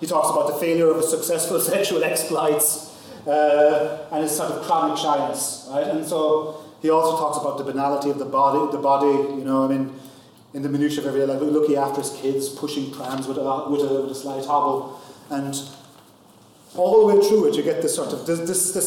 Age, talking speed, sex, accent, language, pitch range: 30-49, 215 wpm, male, British, English, 140-170 Hz